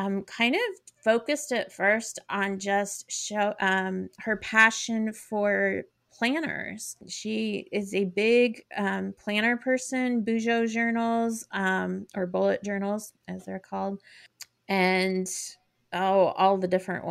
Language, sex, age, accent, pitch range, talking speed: English, female, 30-49, American, 190-225 Hz, 125 wpm